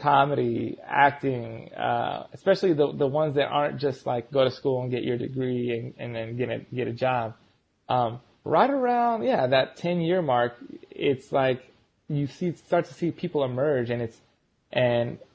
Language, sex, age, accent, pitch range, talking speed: English, male, 20-39, American, 125-155 Hz, 190 wpm